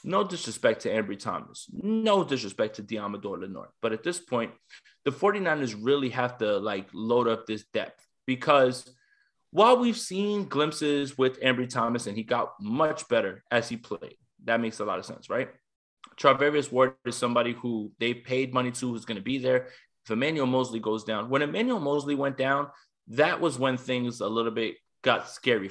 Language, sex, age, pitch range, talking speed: English, male, 20-39, 115-150 Hz, 185 wpm